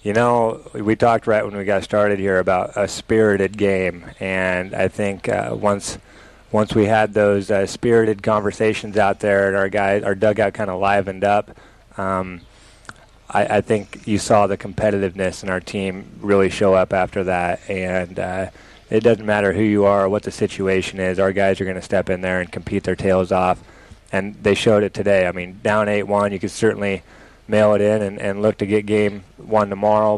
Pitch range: 95-110 Hz